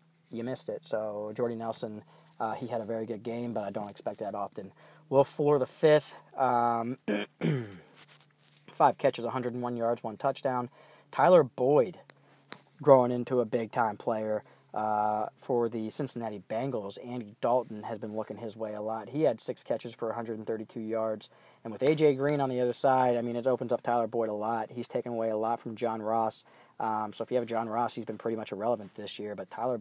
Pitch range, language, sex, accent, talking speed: 110-125 Hz, English, male, American, 200 wpm